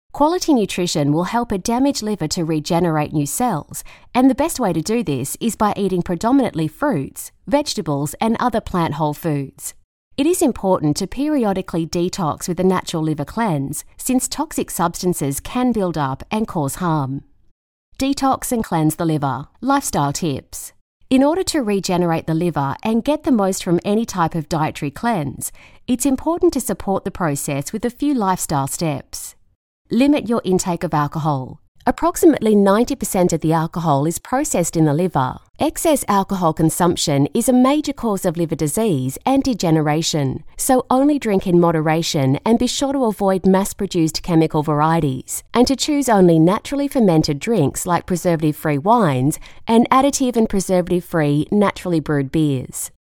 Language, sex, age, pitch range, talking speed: English, female, 30-49, 155-240 Hz, 160 wpm